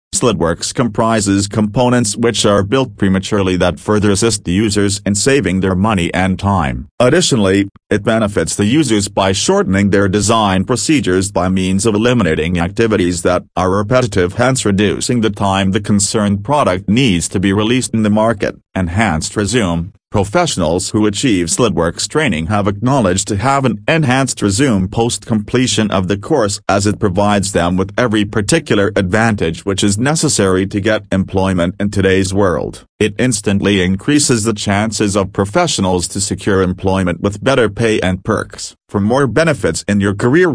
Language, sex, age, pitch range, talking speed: English, male, 40-59, 95-115 Hz, 160 wpm